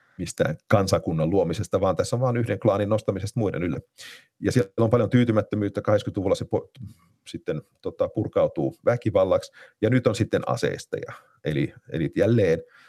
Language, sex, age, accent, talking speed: Finnish, male, 40-59, native, 150 wpm